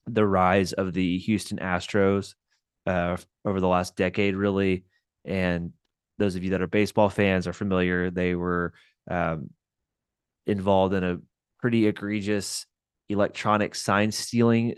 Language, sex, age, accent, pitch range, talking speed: English, male, 20-39, American, 95-110 Hz, 135 wpm